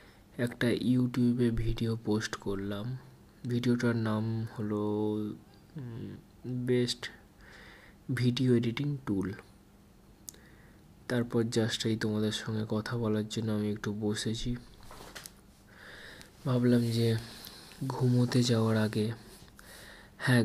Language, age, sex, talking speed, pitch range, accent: Bengali, 20-39, male, 75 wpm, 105-120 Hz, native